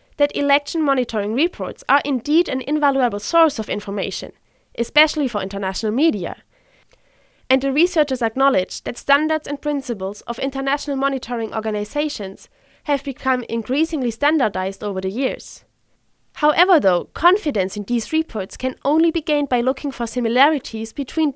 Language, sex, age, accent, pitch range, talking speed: English, female, 20-39, German, 215-290 Hz, 140 wpm